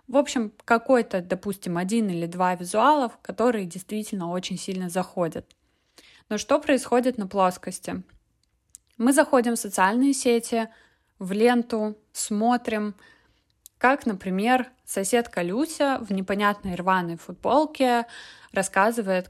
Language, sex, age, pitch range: Russian, female, 20-39, 185-240 Hz